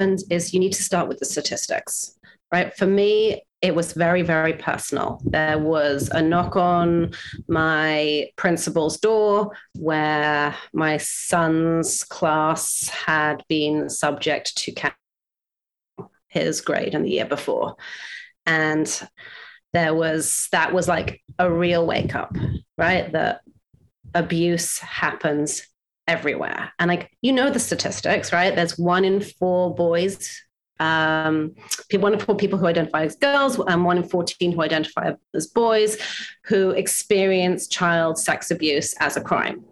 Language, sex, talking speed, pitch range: English, female, 135 wpm, 160-200 Hz